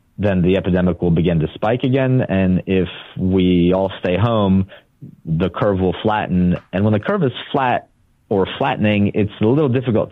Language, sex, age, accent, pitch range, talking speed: English, male, 30-49, American, 90-110 Hz, 180 wpm